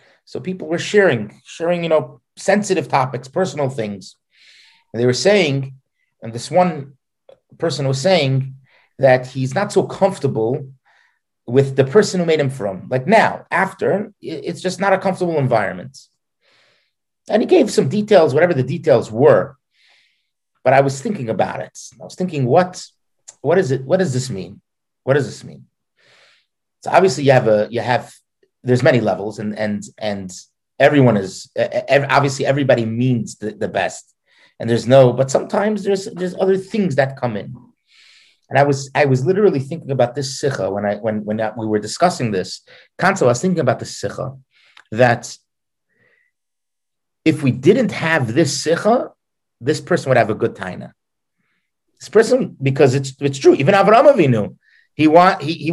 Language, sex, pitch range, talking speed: English, male, 125-185 Hz, 170 wpm